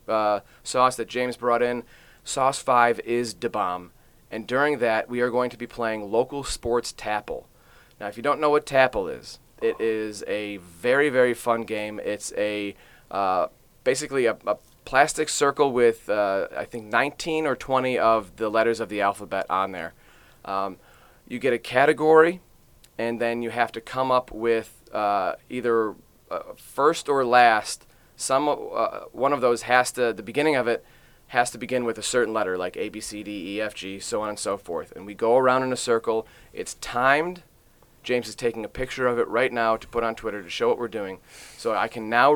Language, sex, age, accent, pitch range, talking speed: English, male, 30-49, American, 110-130 Hz, 200 wpm